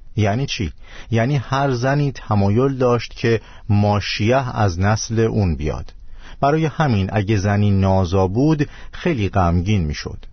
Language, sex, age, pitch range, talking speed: Persian, male, 50-69, 90-115 Hz, 130 wpm